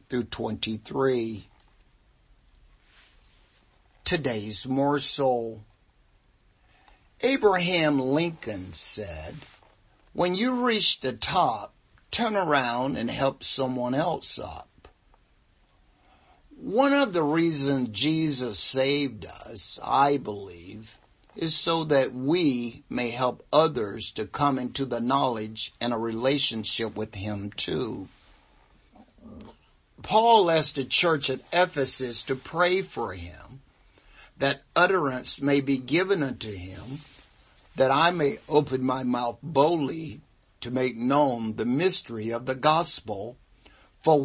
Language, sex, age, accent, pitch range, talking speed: English, male, 60-79, American, 115-150 Hz, 110 wpm